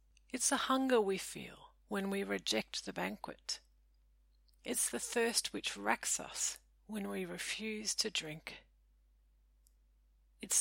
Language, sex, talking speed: English, female, 125 wpm